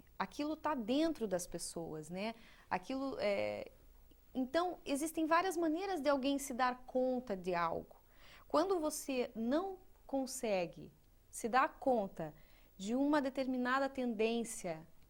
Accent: Brazilian